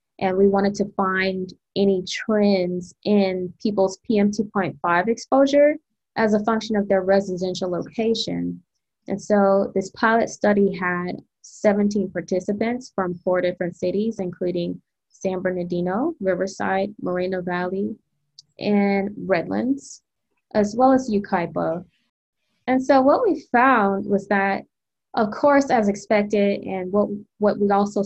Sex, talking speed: female, 125 wpm